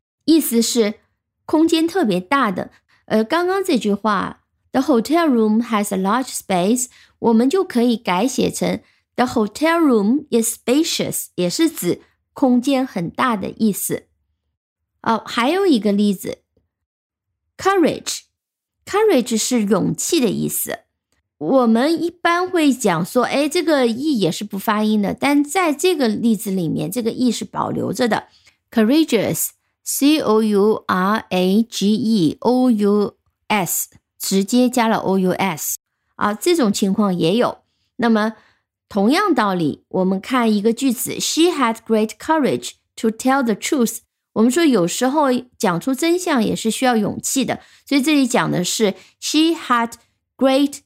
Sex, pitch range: female, 210-275 Hz